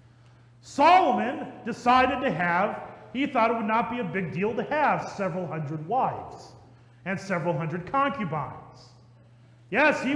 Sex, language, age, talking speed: male, English, 40-59, 140 wpm